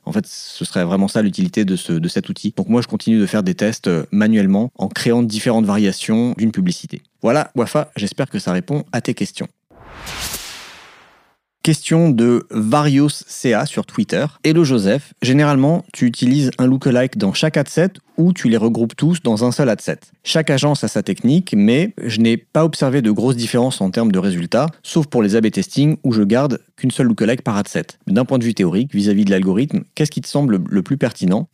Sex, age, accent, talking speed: male, 30-49, French, 210 wpm